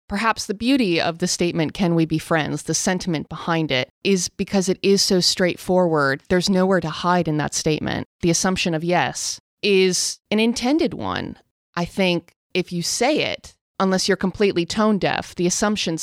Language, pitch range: English, 160-190 Hz